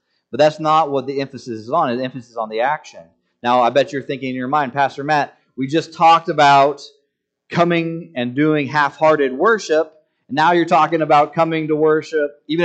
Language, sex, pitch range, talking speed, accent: English, male, 115-150 Hz, 200 wpm, American